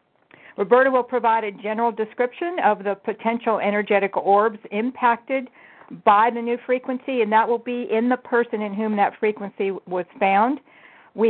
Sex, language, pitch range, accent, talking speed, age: female, English, 200-240 Hz, American, 160 wpm, 50-69